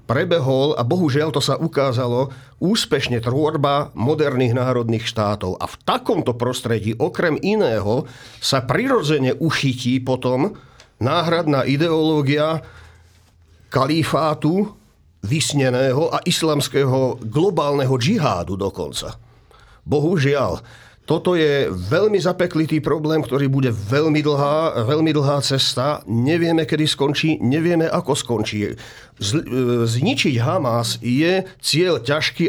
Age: 40-59